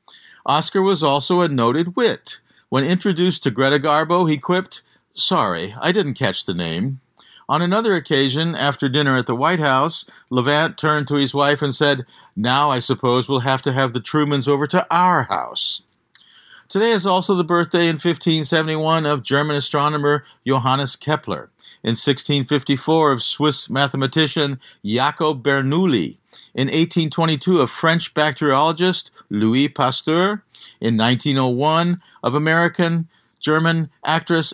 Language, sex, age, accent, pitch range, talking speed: English, male, 50-69, American, 135-165 Hz, 140 wpm